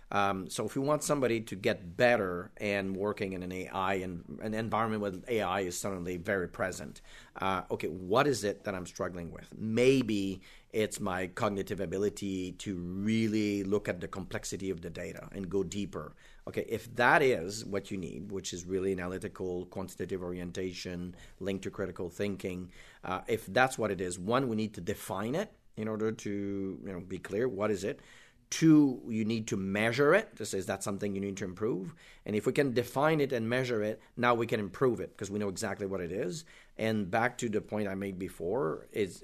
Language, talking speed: English, 200 wpm